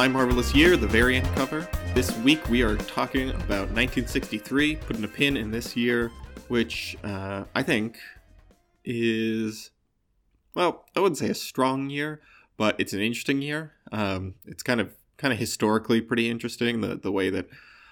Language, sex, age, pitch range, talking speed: English, male, 20-39, 100-125 Hz, 165 wpm